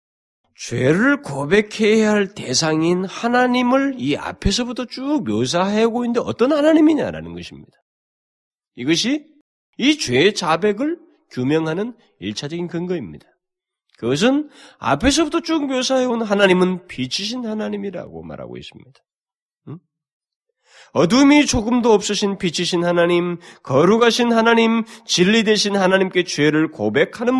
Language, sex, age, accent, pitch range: Korean, male, 40-59, native, 175-280 Hz